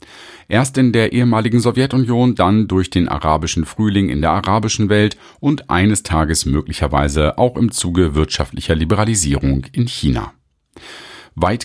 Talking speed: 135 wpm